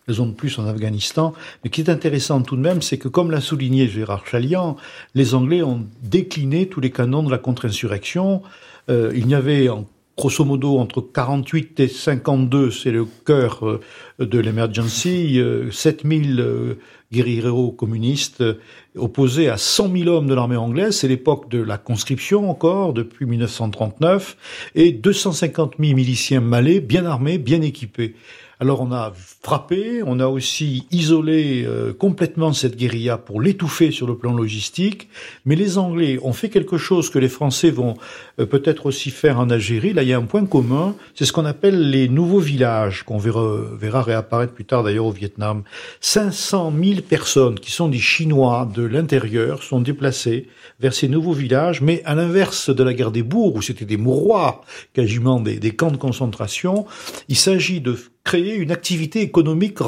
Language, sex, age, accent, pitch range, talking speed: French, male, 50-69, French, 120-165 Hz, 175 wpm